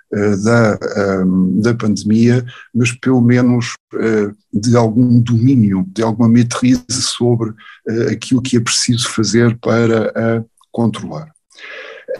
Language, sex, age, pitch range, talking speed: Portuguese, male, 50-69, 110-125 Hz, 105 wpm